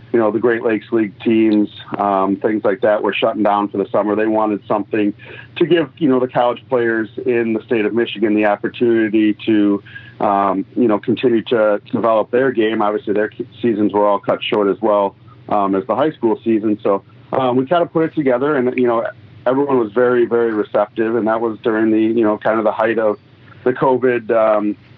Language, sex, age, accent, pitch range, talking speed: English, male, 40-59, American, 105-125 Hz, 215 wpm